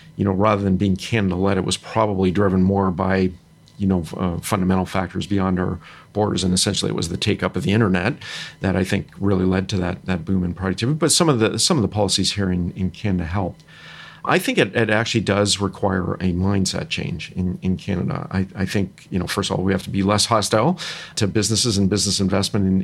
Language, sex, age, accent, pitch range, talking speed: English, male, 40-59, American, 95-110 Hz, 225 wpm